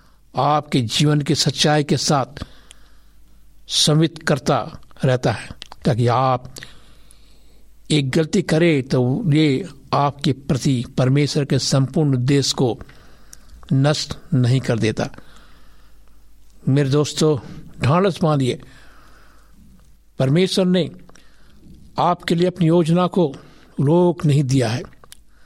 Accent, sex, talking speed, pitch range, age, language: native, male, 105 wpm, 130-160 Hz, 60-79, Hindi